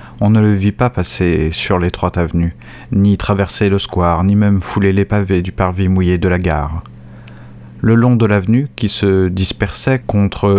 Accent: French